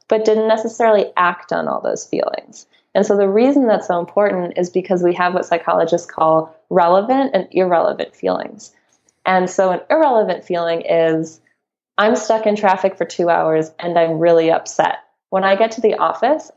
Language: English